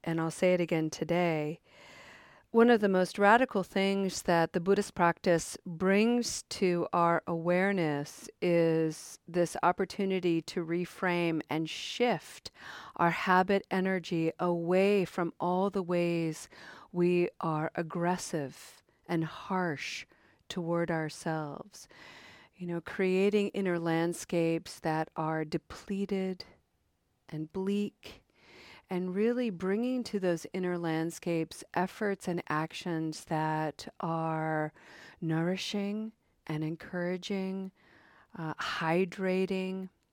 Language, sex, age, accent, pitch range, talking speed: English, female, 40-59, American, 160-190 Hz, 105 wpm